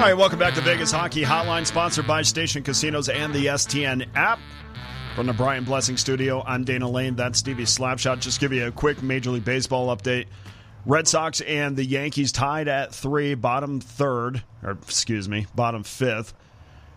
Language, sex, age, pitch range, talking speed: English, male, 30-49, 115-140 Hz, 180 wpm